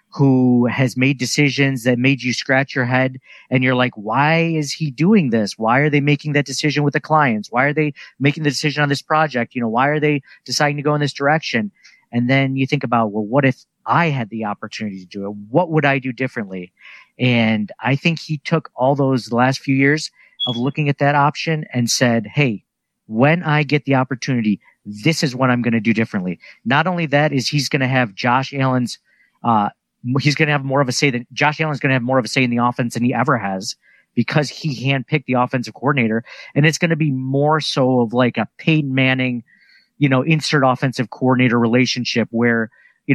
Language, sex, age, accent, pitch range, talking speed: English, male, 50-69, American, 125-150 Hz, 225 wpm